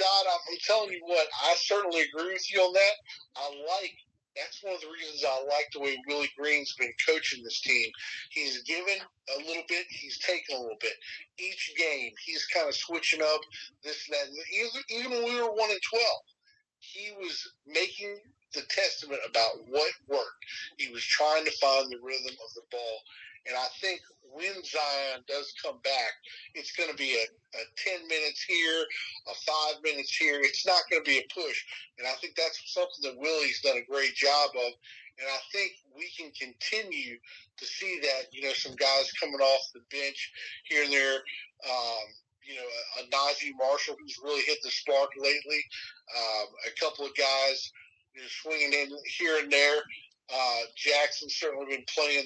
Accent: American